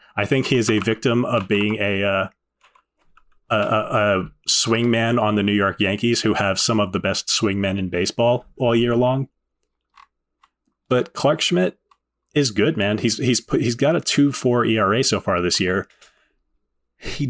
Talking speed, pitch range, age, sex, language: 180 wpm, 100-120 Hz, 30-49, male, English